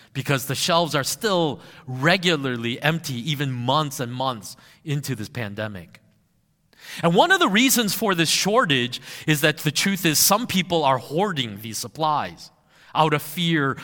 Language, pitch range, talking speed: English, 130-175 Hz, 155 wpm